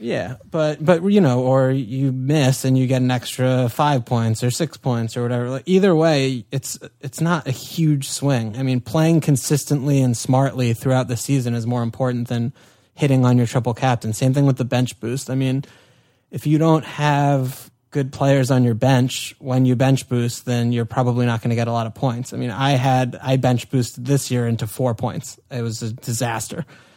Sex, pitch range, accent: male, 120-135 Hz, American